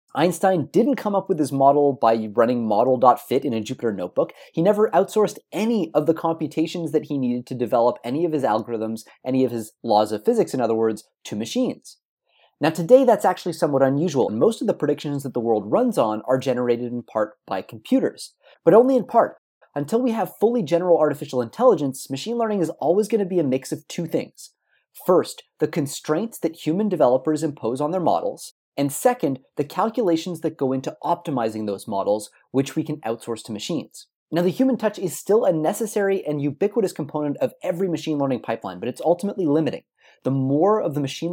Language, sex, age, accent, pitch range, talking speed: English, male, 30-49, American, 125-175 Hz, 195 wpm